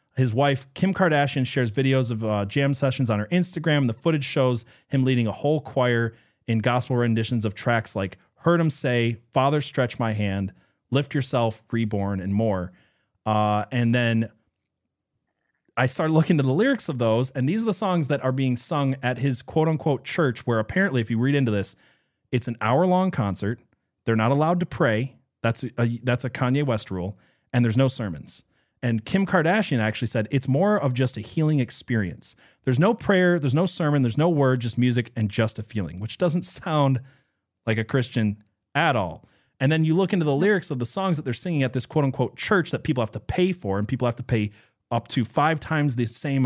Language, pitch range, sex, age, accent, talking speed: English, 110-140 Hz, male, 30-49, American, 210 wpm